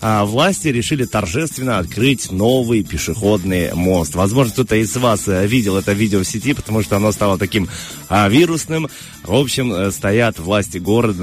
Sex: male